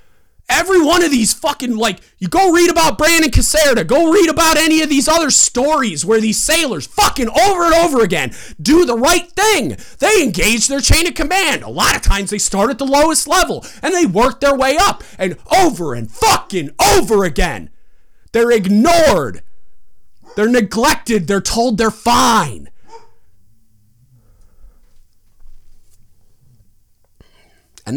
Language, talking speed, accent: English, 150 wpm, American